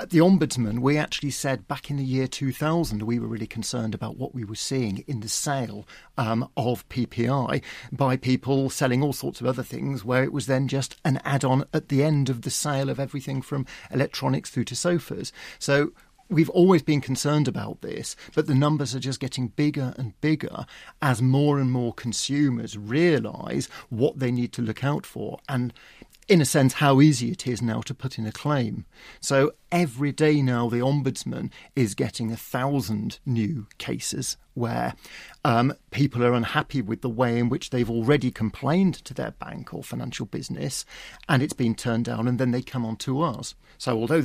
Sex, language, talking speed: male, English, 195 wpm